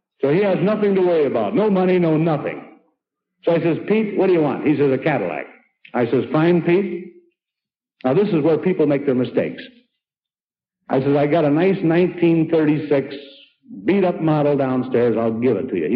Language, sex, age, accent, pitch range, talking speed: English, male, 60-79, American, 155-215 Hz, 190 wpm